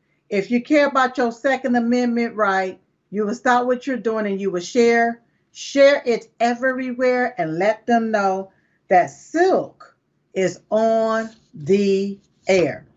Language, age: English, 50-69